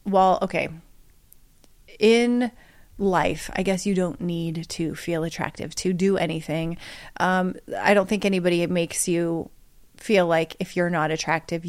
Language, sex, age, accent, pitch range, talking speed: English, female, 30-49, American, 175-215 Hz, 145 wpm